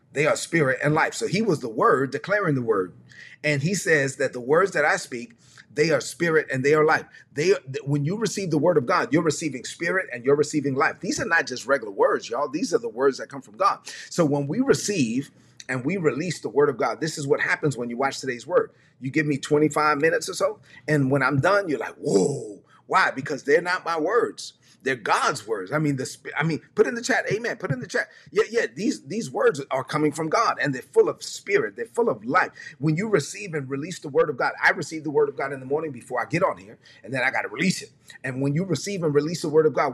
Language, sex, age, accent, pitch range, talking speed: English, male, 30-49, American, 140-200 Hz, 260 wpm